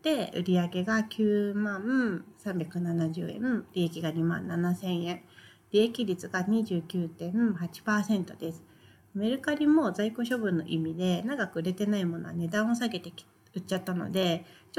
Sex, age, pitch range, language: female, 40-59, 175-230 Hz, Japanese